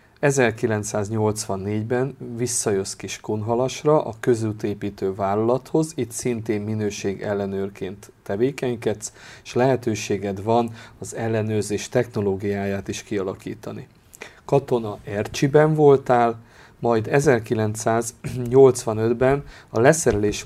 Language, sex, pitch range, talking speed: Hungarian, male, 105-125 Hz, 75 wpm